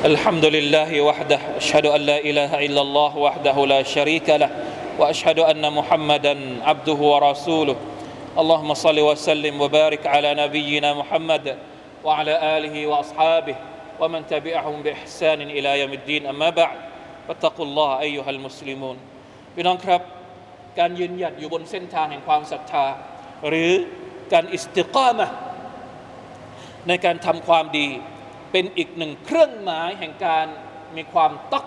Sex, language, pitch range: male, Thai, 150-215 Hz